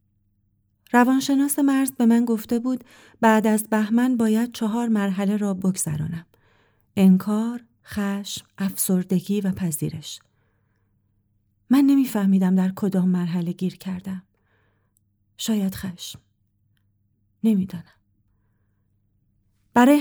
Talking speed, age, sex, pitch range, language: 95 wpm, 40-59, female, 150-220 Hz, Persian